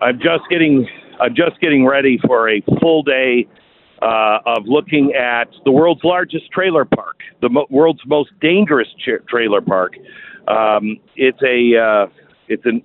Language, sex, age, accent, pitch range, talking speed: English, male, 50-69, American, 110-160 Hz, 160 wpm